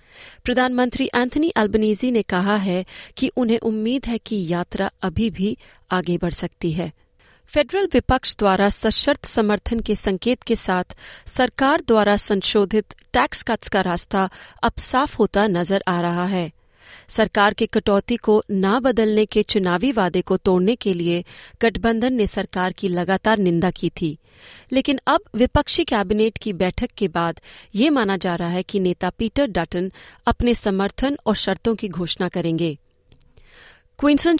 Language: Hindi